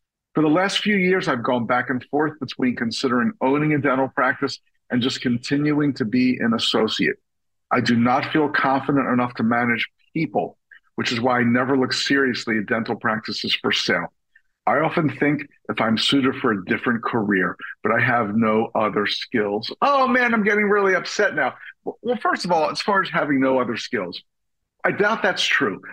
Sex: male